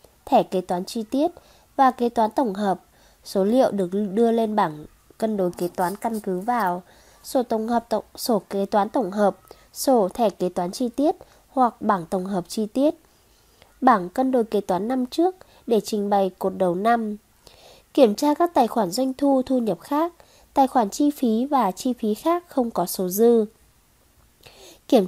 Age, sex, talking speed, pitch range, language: 20-39, female, 190 wpm, 200-260 Hz, Vietnamese